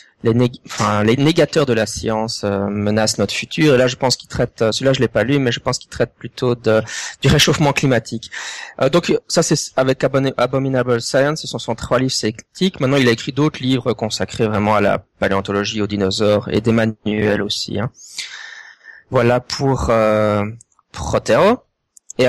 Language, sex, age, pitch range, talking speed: French, male, 20-39, 115-140 Hz, 190 wpm